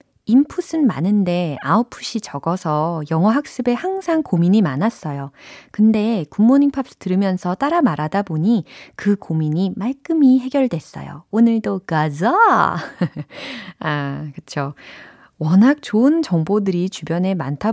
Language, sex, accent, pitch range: Korean, female, native, 155-225 Hz